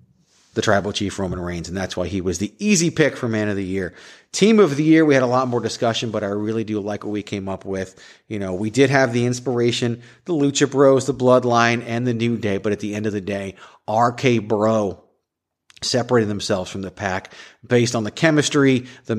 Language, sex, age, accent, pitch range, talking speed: English, male, 40-59, American, 105-135 Hz, 230 wpm